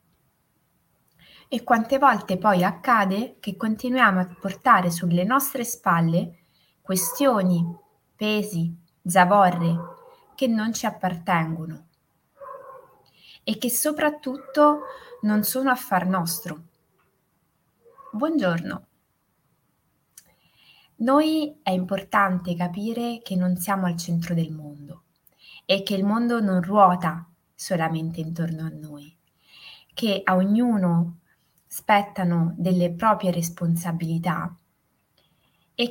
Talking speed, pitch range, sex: 95 wpm, 170-220 Hz, female